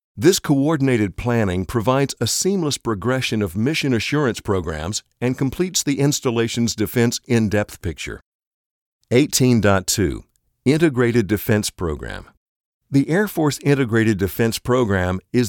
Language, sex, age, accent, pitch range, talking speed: English, male, 50-69, American, 100-130 Hz, 110 wpm